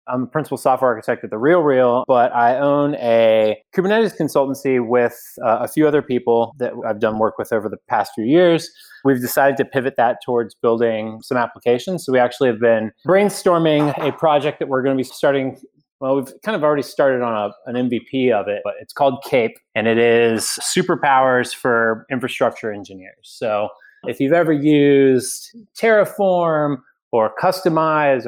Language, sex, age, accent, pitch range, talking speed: English, male, 20-39, American, 115-155 Hz, 180 wpm